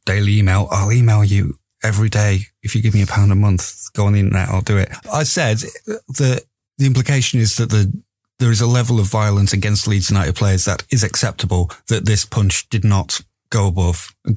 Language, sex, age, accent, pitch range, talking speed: English, male, 30-49, British, 95-120 Hz, 215 wpm